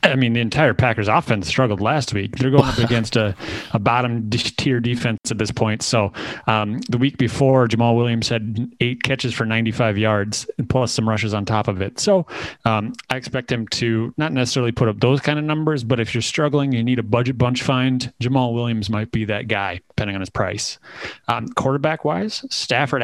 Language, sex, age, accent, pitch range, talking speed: English, male, 30-49, American, 115-135 Hz, 205 wpm